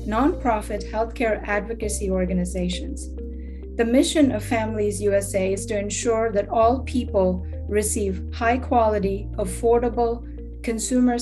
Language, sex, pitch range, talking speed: English, female, 200-240 Hz, 105 wpm